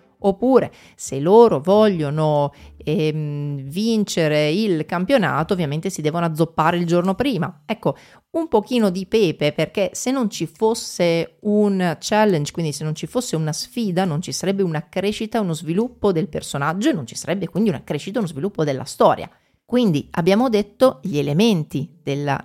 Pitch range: 155-220 Hz